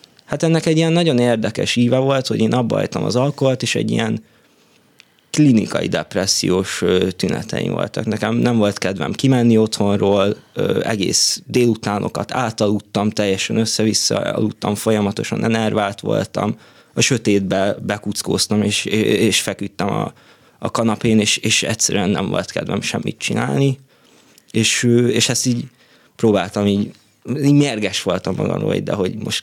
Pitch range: 105-125 Hz